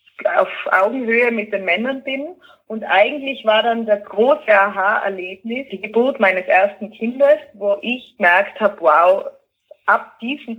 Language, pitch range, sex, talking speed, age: German, 200-275 Hz, female, 140 wpm, 20-39